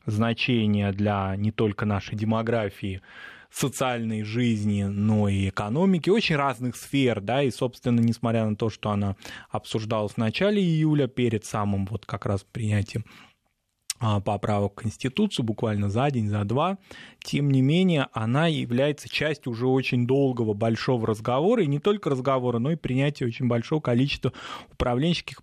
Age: 20-39